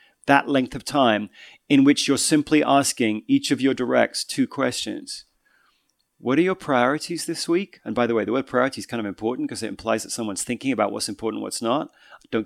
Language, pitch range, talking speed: English, 125-165 Hz, 210 wpm